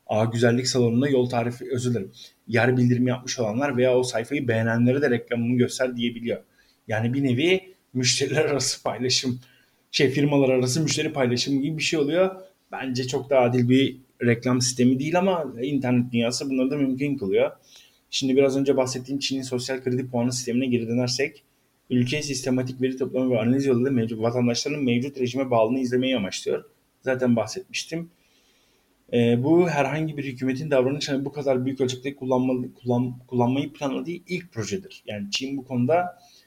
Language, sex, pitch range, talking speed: Turkish, male, 120-140 Hz, 160 wpm